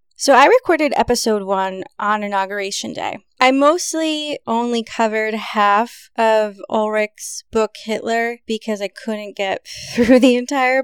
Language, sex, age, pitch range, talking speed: English, female, 20-39, 195-230 Hz, 135 wpm